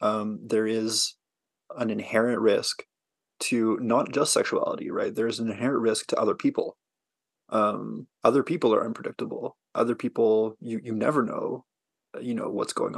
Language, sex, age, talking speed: English, male, 20-39, 155 wpm